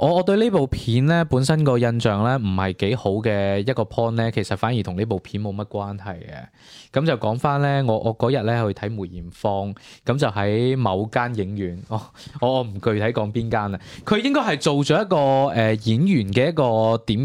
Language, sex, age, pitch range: Chinese, male, 20-39, 110-165 Hz